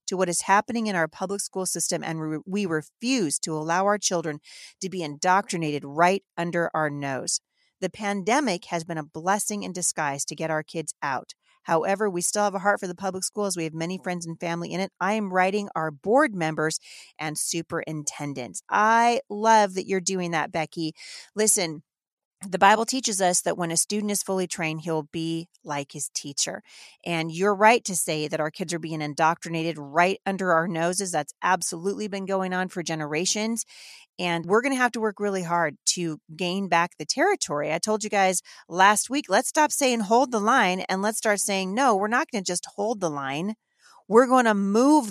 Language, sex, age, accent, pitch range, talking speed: English, female, 40-59, American, 165-205 Hz, 195 wpm